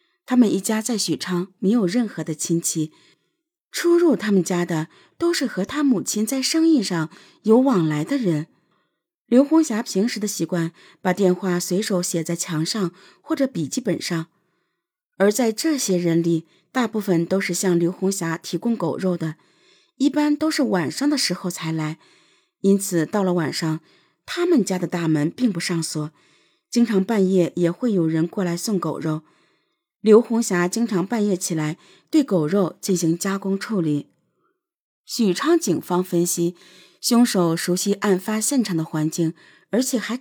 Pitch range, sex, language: 170-245 Hz, female, Chinese